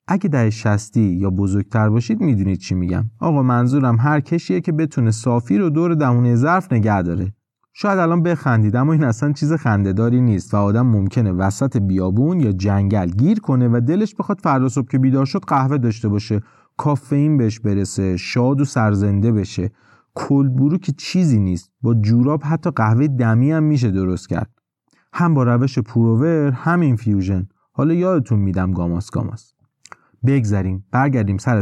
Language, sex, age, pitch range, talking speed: Persian, male, 30-49, 105-145 Hz, 160 wpm